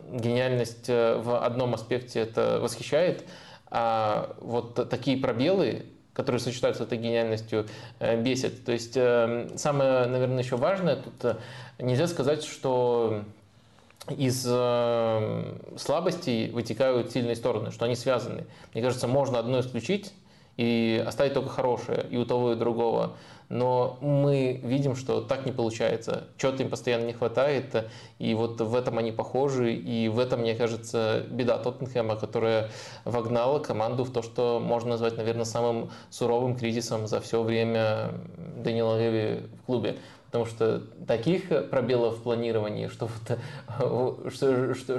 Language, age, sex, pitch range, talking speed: Russian, 20-39, male, 115-125 Hz, 135 wpm